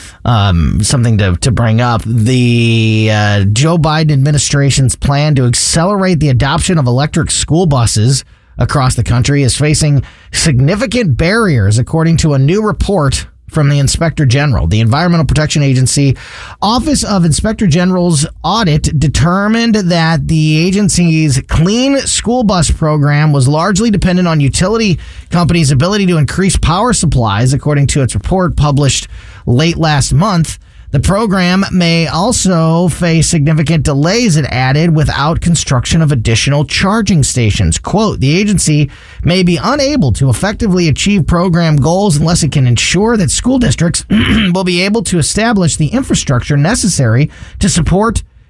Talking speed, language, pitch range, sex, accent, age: 140 wpm, English, 125-180 Hz, male, American, 30-49